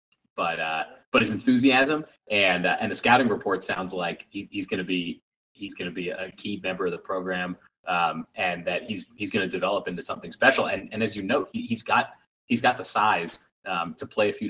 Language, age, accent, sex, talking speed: English, 30-49, American, male, 235 wpm